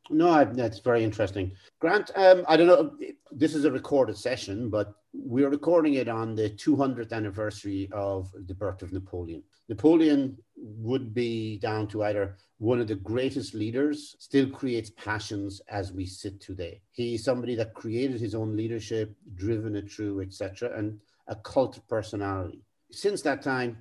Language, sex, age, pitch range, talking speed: English, male, 50-69, 100-120 Hz, 160 wpm